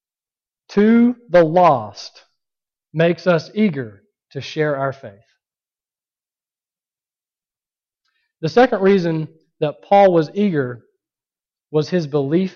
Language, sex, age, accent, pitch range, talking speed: English, male, 40-59, American, 145-200 Hz, 95 wpm